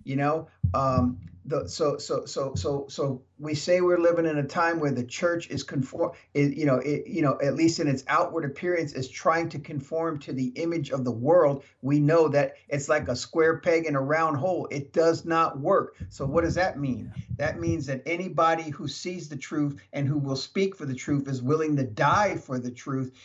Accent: American